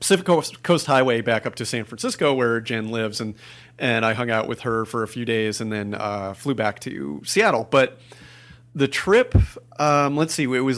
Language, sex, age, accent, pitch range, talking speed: English, male, 40-59, American, 115-140 Hz, 205 wpm